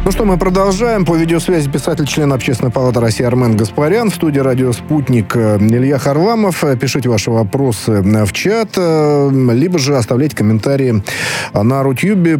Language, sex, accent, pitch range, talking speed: Russian, male, native, 115-155 Hz, 145 wpm